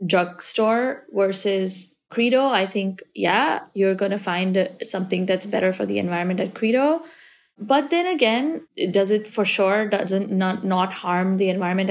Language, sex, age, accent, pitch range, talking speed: English, female, 20-39, Indian, 190-240 Hz, 150 wpm